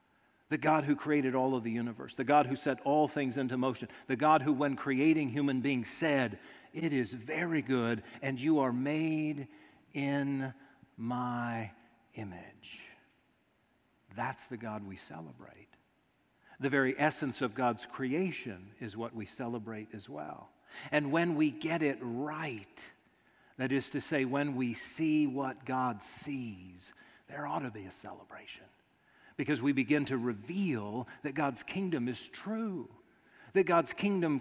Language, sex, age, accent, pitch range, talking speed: English, male, 50-69, American, 120-155 Hz, 150 wpm